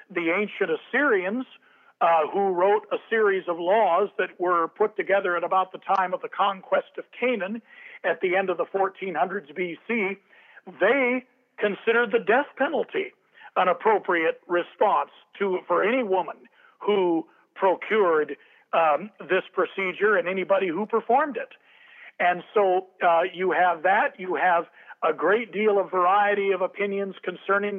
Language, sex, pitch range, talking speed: English, male, 185-235 Hz, 145 wpm